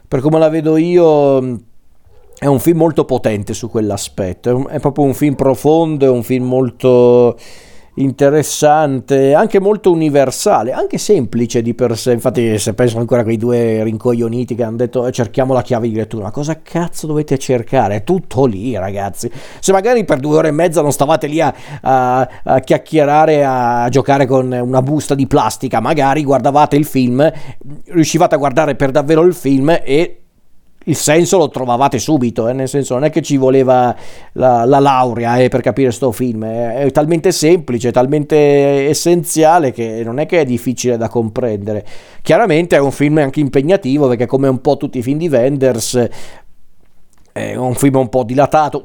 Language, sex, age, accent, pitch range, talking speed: Italian, male, 40-59, native, 120-145 Hz, 180 wpm